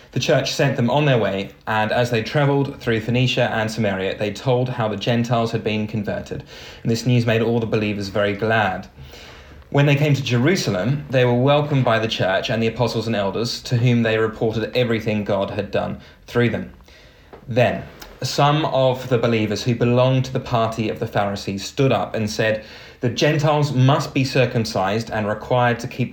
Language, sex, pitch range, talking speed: English, male, 110-130 Hz, 190 wpm